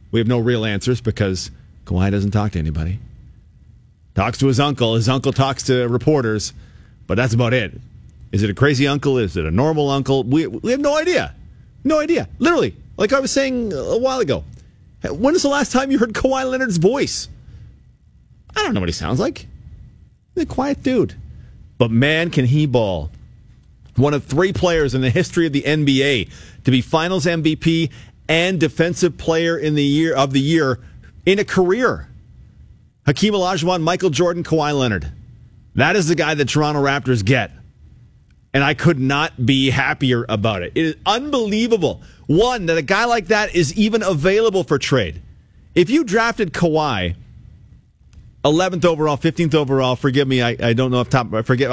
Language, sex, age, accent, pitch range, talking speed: English, male, 40-59, American, 115-175 Hz, 180 wpm